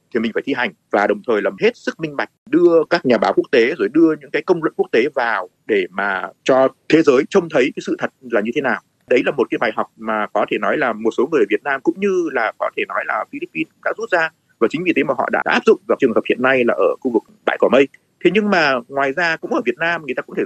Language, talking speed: Vietnamese, 300 wpm